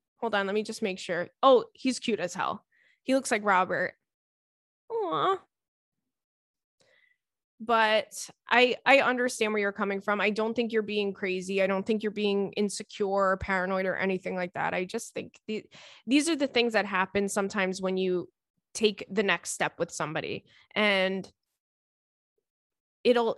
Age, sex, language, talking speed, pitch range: 20-39, female, English, 165 wpm, 190-245 Hz